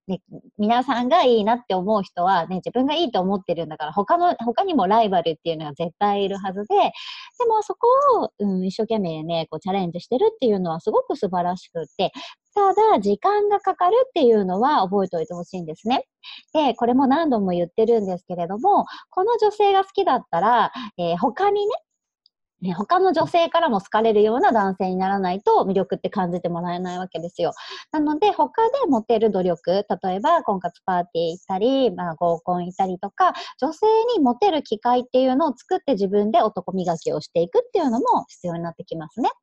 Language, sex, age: Japanese, male, 40-59